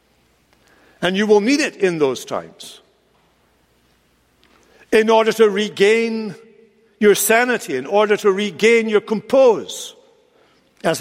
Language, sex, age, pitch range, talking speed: English, male, 60-79, 165-220 Hz, 115 wpm